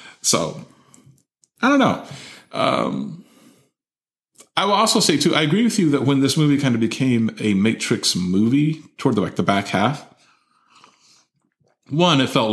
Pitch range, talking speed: 105-140 Hz, 160 wpm